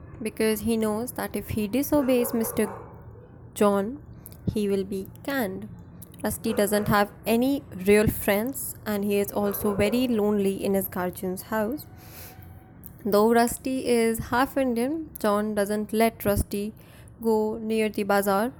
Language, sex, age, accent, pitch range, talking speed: English, female, 20-39, Indian, 195-230 Hz, 135 wpm